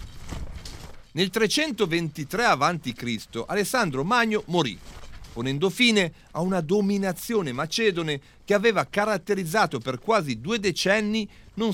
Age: 40-59